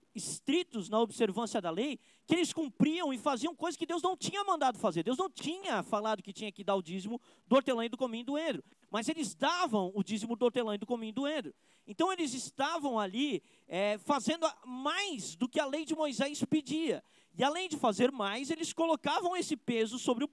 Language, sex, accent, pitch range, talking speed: Portuguese, male, Brazilian, 220-295 Hz, 215 wpm